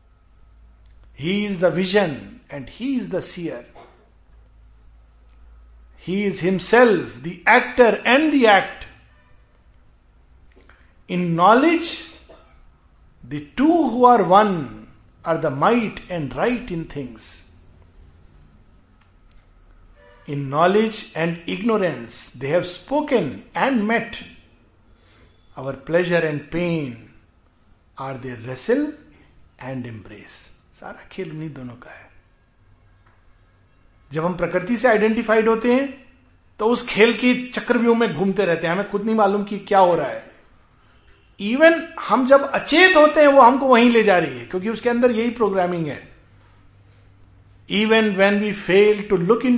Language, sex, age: Hindi, male, 50-69